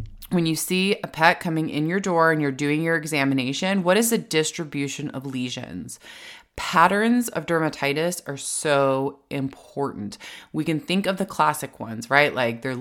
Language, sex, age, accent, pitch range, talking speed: English, female, 20-39, American, 135-180 Hz, 170 wpm